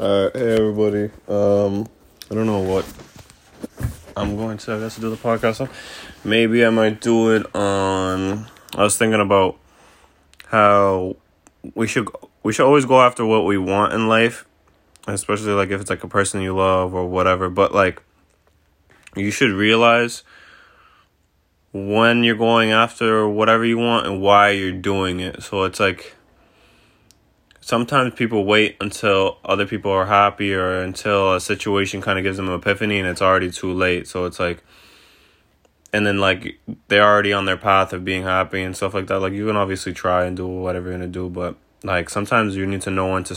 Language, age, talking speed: English, 20-39, 180 wpm